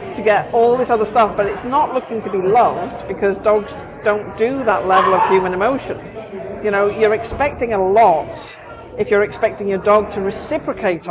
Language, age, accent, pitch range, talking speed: English, 40-59, British, 190-230 Hz, 190 wpm